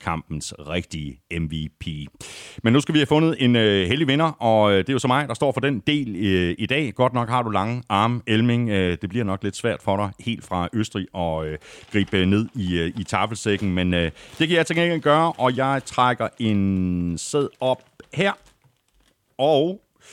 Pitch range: 95-130 Hz